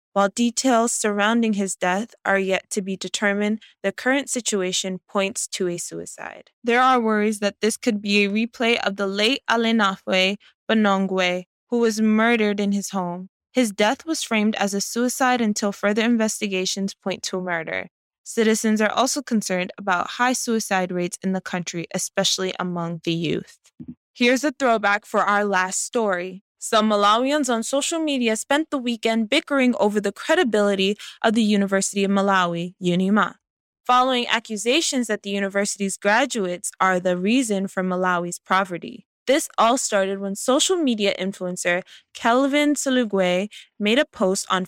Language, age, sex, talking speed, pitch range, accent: English, 20-39, female, 155 wpm, 190-235 Hz, American